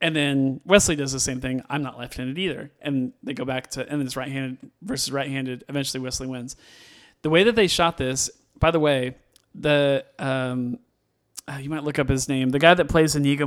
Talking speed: 210 wpm